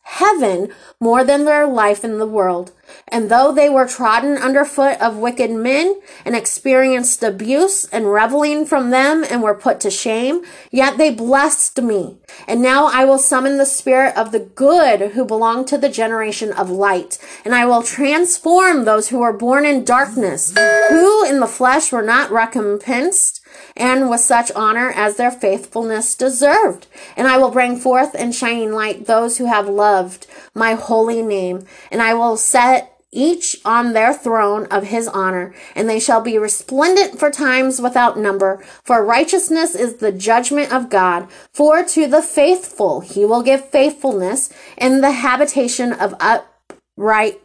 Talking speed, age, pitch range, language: 165 wpm, 30-49, 220-280 Hz, English